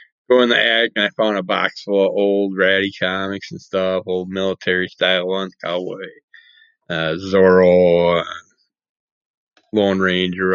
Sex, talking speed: male, 135 wpm